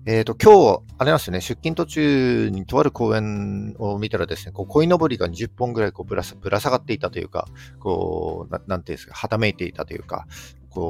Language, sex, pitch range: Japanese, male, 90-120 Hz